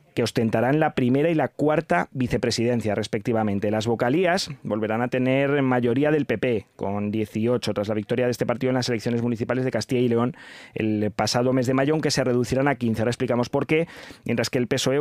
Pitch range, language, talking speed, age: 115-135 Hz, Spanish, 205 wpm, 20-39